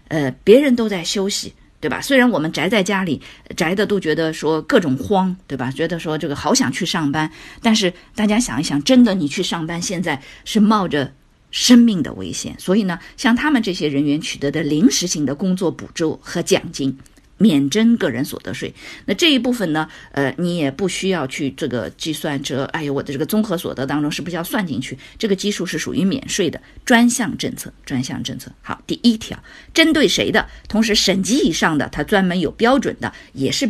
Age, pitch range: 50-69, 150-225 Hz